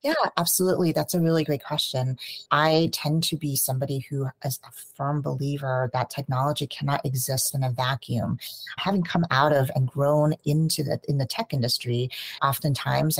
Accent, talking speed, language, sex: American, 170 wpm, English, female